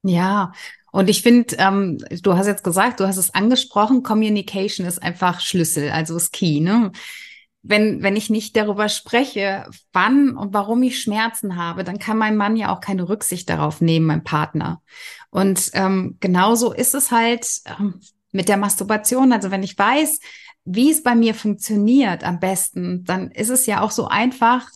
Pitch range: 190-235 Hz